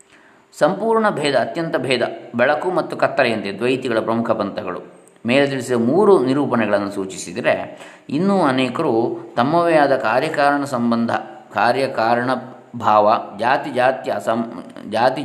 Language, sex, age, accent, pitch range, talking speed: Kannada, male, 20-39, native, 105-135 Hz, 105 wpm